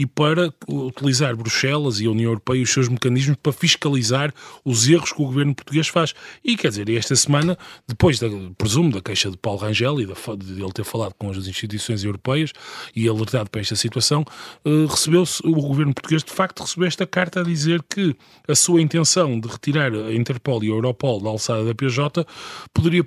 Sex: male